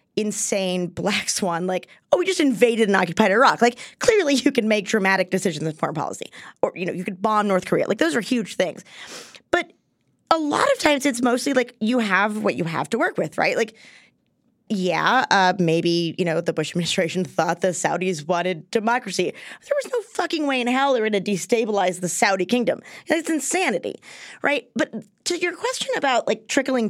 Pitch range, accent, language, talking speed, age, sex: 185-255 Hz, American, English, 200 wpm, 20-39, female